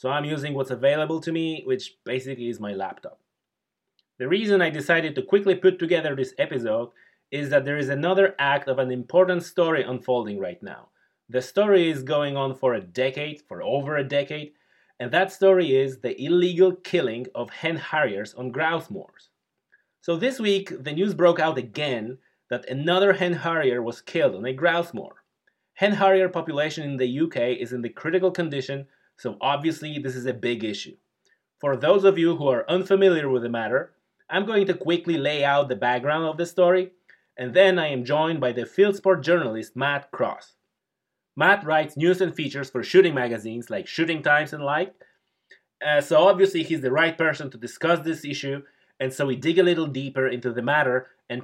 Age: 30-49